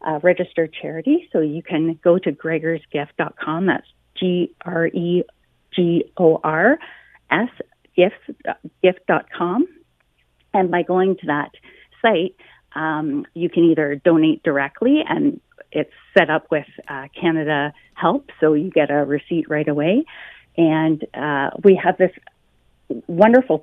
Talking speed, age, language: 110 wpm, 40-59, English